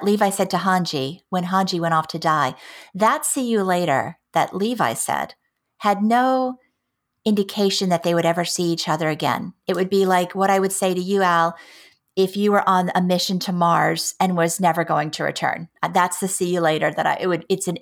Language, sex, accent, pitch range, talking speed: English, female, American, 170-205 Hz, 210 wpm